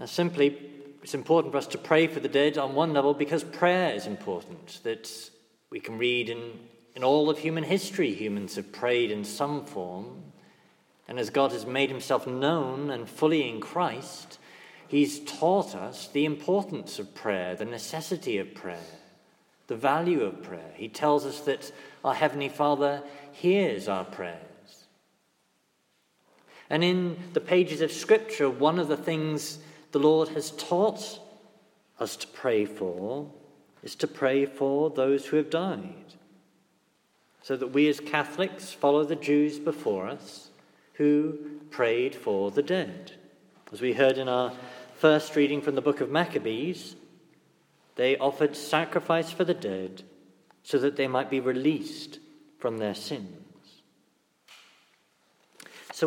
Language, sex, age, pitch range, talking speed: English, male, 40-59, 135-160 Hz, 150 wpm